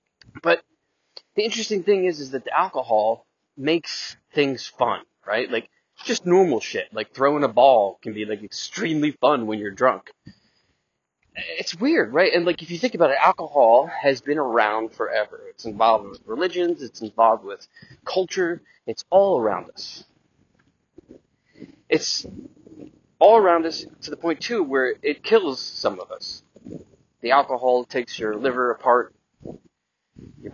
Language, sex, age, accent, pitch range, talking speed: English, male, 20-39, American, 115-160 Hz, 155 wpm